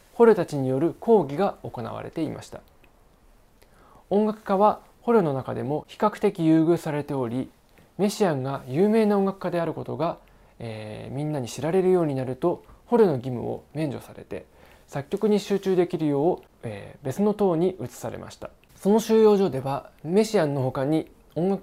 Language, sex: Japanese, male